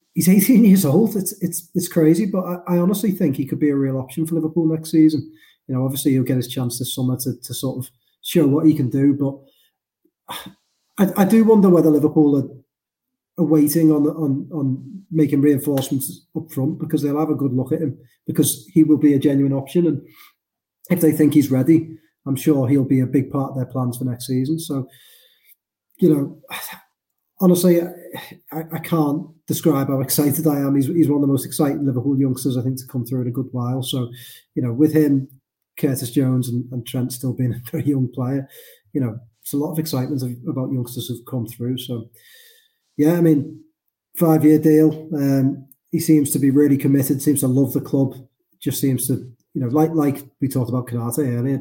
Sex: male